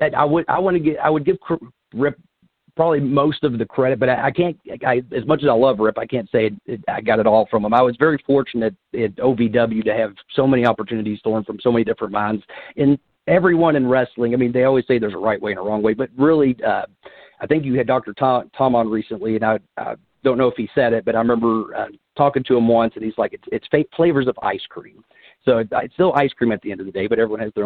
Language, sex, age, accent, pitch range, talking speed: English, male, 40-59, American, 110-130 Hz, 270 wpm